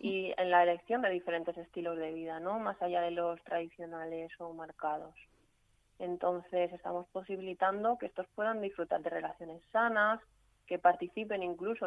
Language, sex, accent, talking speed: Spanish, female, Spanish, 150 wpm